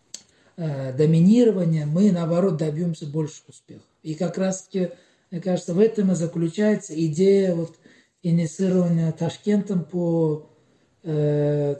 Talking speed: 105 wpm